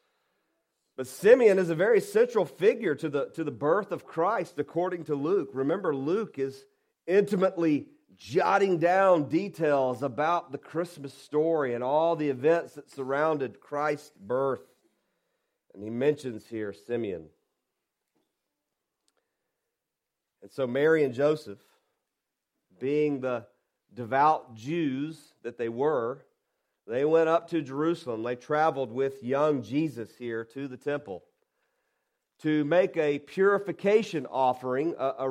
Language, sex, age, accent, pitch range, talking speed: English, male, 40-59, American, 135-180 Hz, 120 wpm